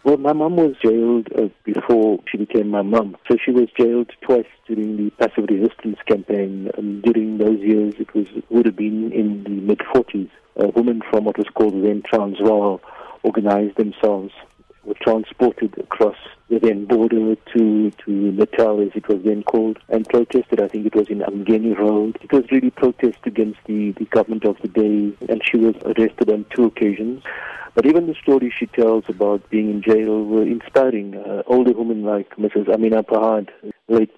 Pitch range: 105-120 Hz